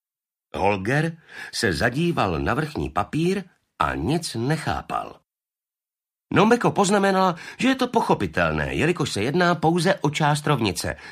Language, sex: Slovak, male